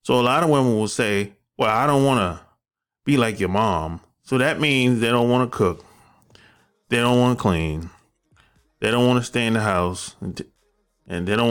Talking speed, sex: 215 wpm, male